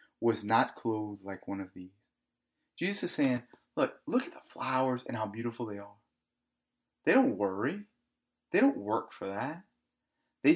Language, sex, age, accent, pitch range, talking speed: English, male, 30-49, American, 105-160 Hz, 165 wpm